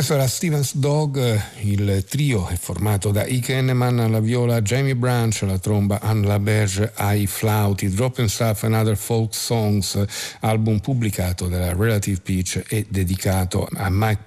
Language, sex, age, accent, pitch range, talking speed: Italian, male, 50-69, native, 95-115 Hz, 155 wpm